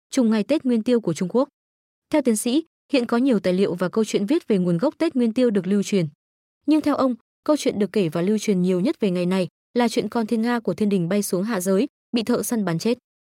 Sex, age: female, 20-39